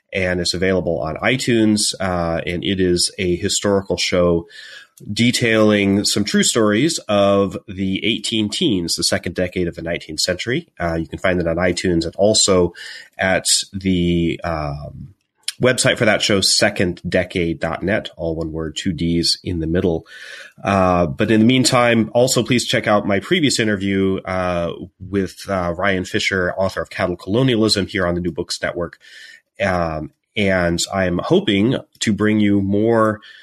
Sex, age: male, 30-49